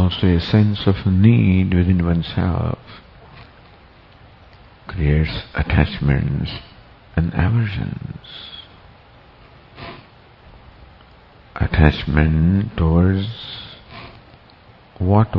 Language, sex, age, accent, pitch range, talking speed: English, male, 50-69, Indian, 85-110 Hz, 55 wpm